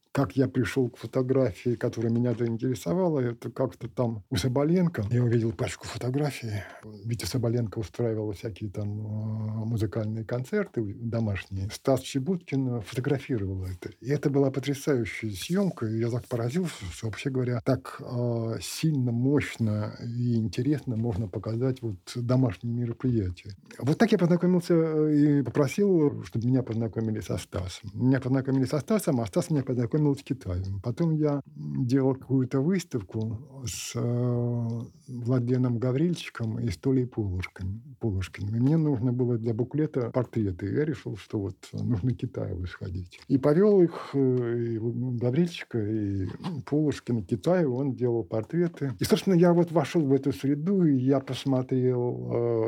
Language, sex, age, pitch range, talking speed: Russian, male, 50-69, 110-135 Hz, 130 wpm